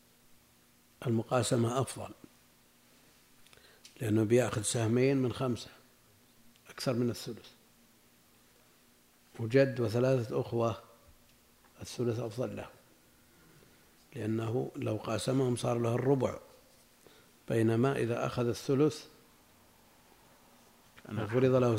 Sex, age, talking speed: male, 60-79, 80 wpm